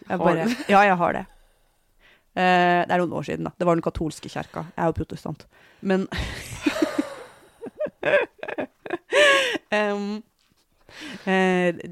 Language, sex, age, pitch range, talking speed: English, female, 30-49, 155-180 Hz, 130 wpm